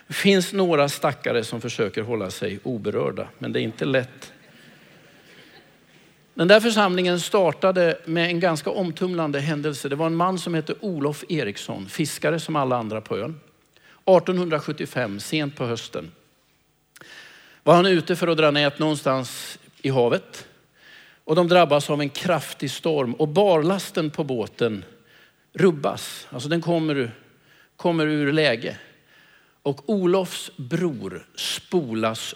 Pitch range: 135-180 Hz